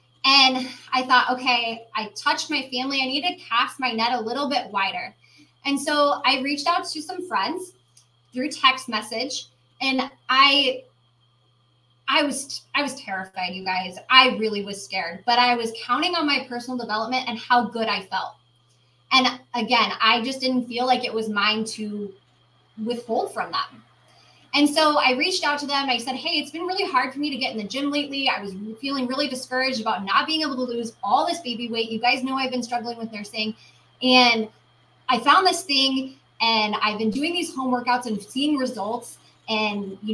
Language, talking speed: English, 195 wpm